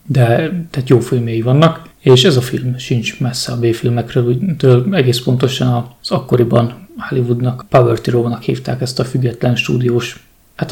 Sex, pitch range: male, 120-130 Hz